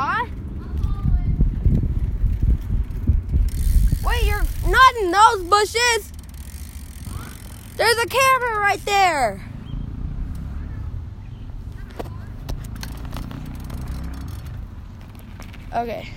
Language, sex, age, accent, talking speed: English, female, 10-29, American, 45 wpm